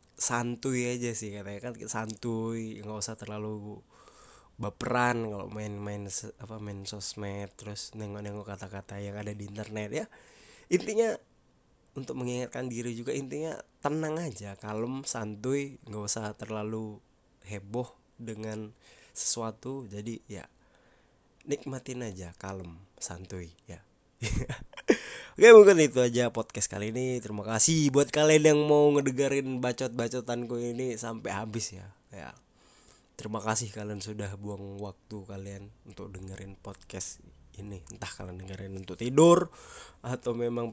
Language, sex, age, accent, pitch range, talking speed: Indonesian, male, 20-39, native, 100-125 Hz, 125 wpm